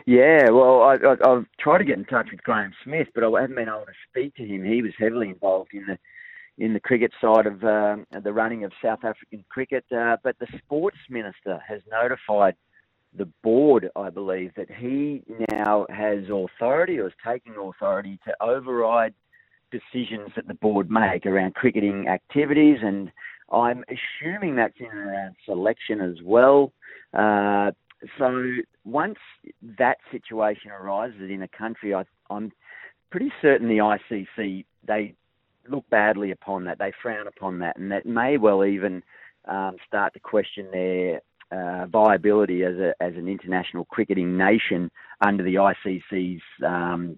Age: 40-59